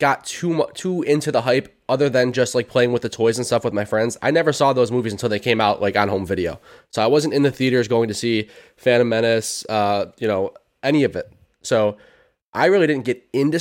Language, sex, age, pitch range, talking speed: English, male, 20-39, 110-140 Hz, 245 wpm